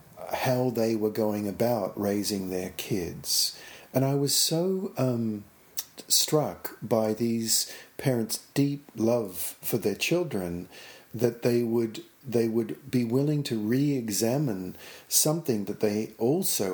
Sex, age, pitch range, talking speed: male, 50-69, 100-125 Hz, 125 wpm